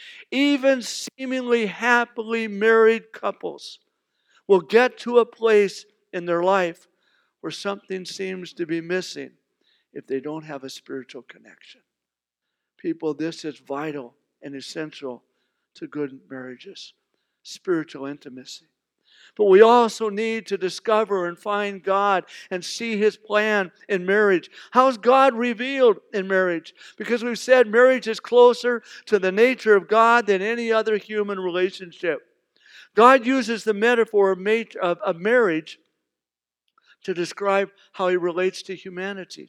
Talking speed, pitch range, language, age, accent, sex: 130 wpm, 185-240 Hz, English, 60-79, American, male